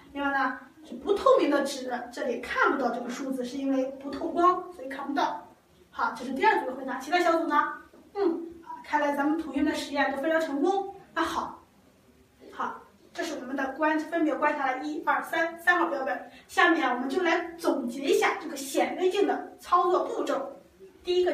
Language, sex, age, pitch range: Chinese, female, 20-39, 280-355 Hz